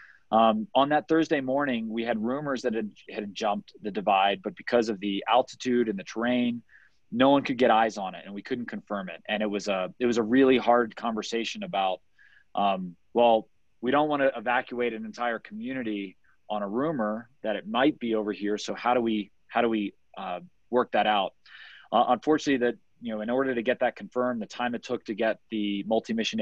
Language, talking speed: English, 215 wpm